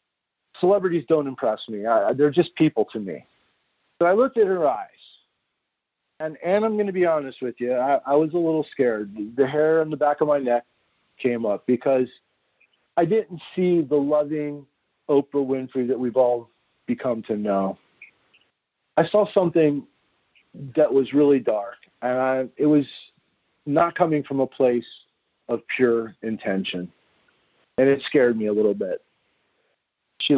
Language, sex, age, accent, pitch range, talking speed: English, male, 40-59, American, 125-160 Hz, 160 wpm